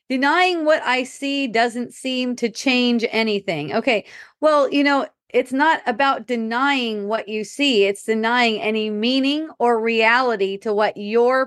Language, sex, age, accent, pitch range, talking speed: English, female, 30-49, American, 225-280 Hz, 150 wpm